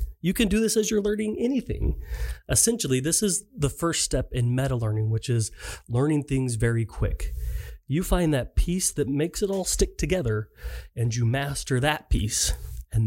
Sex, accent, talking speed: male, American, 175 wpm